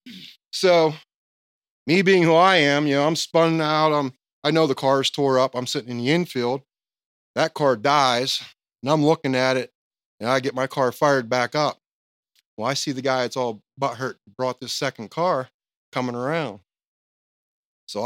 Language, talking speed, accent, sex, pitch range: English, 180 wpm, American, male, 120-155 Hz